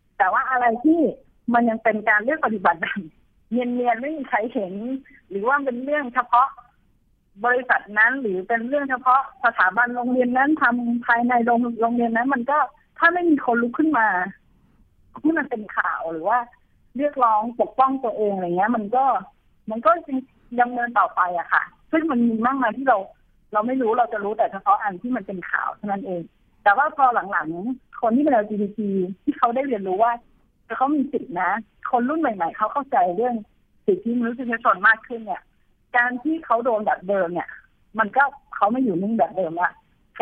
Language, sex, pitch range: Thai, female, 205-260 Hz